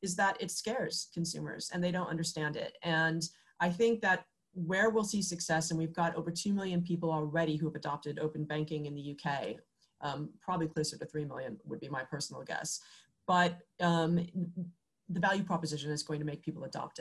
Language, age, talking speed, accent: English, 30-49, 200 wpm, American